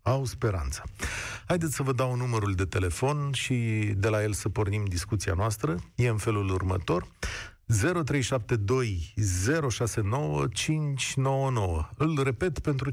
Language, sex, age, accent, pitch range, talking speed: Romanian, male, 40-59, native, 100-135 Hz, 120 wpm